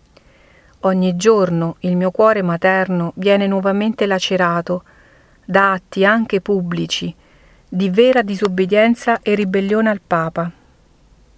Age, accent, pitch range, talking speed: 40-59, native, 185-215 Hz, 105 wpm